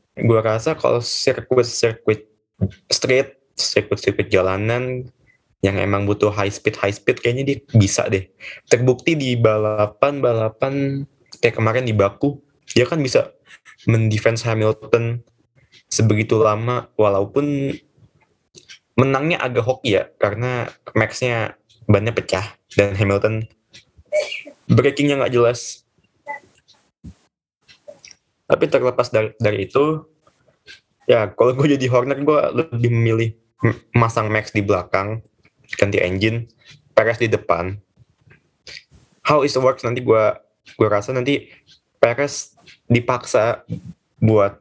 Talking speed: 105 wpm